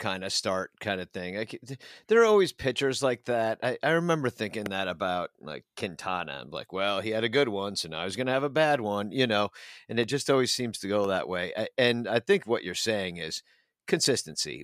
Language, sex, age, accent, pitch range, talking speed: English, male, 50-69, American, 100-130 Hz, 240 wpm